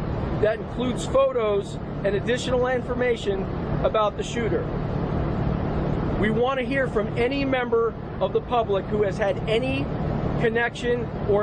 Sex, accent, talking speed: male, American, 130 wpm